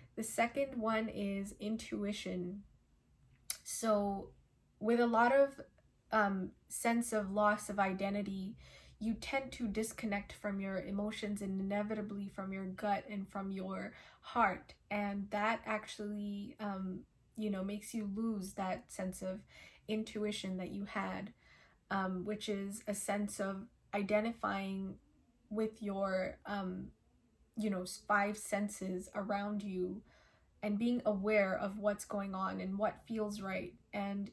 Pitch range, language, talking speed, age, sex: 195-215 Hz, English, 135 wpm, 20-39, female